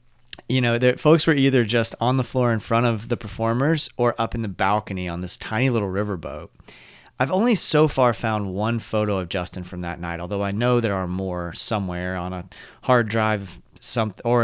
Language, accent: English, American